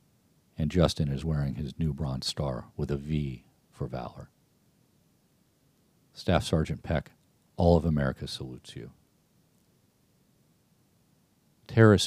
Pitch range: 70-85 Hz